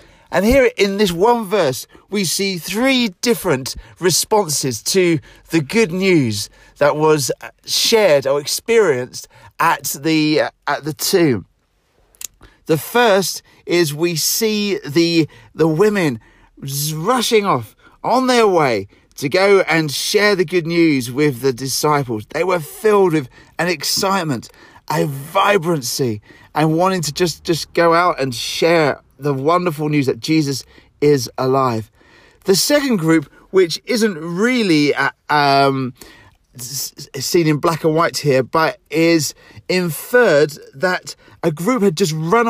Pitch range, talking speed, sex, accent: 145-200 Hz, 135 wpm, male, British